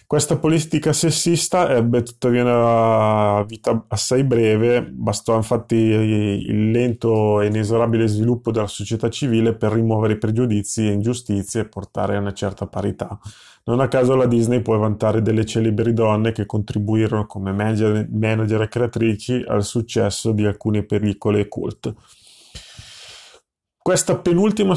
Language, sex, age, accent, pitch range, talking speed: Italian, male, 30-49, native, 110-140 Hz, 140 wpm